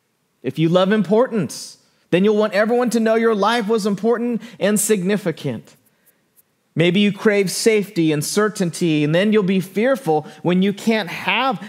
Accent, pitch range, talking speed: American, 150-200 Hz, 160 wpm